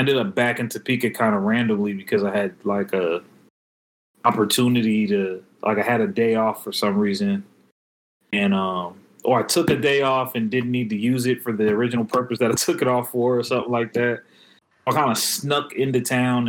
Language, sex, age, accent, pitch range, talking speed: English, male, 30-49, American, 105-125 Hz, 215 wpm